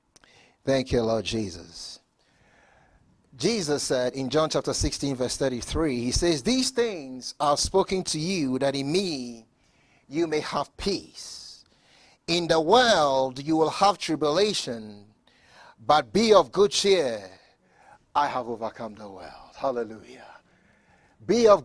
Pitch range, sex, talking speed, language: 130-190 Hz, male, 130 wpm, English